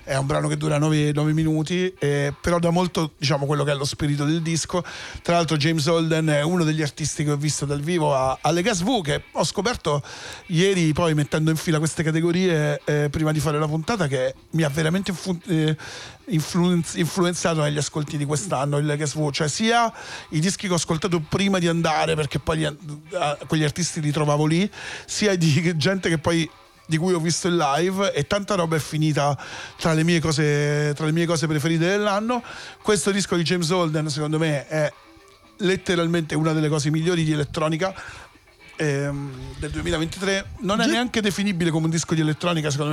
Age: 40-59